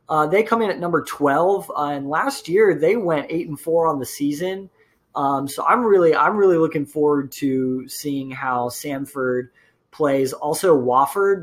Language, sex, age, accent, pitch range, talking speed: English, male, 20-39, American, 130-175 Hz, 180 wpm